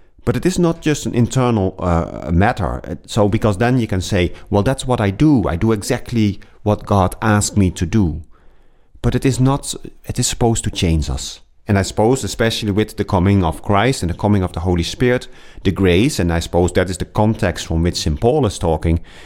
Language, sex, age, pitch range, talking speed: English, male, 40-59, 85-110 Hz, 220 wpm